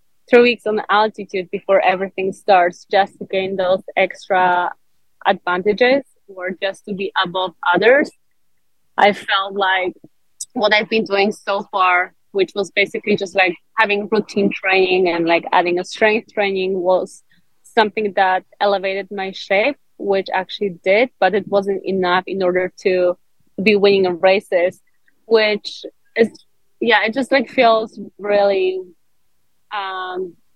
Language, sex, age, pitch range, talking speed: English, female, 20-39, 185-210 Hz, 135 wpm